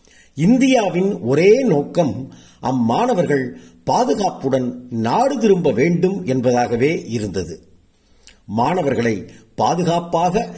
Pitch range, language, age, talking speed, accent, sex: 110-190 Hz, Tamil, 50-69, 70 wpm, native, male